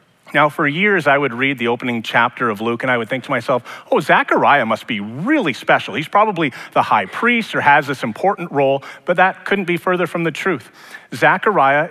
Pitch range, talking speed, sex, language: 120-165 Hz, 210 wpm, male, English